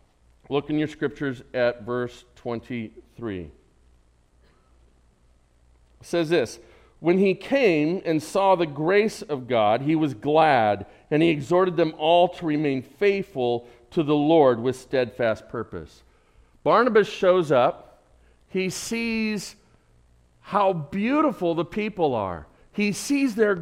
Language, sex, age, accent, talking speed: English, male, 50-69, American, 125 wpm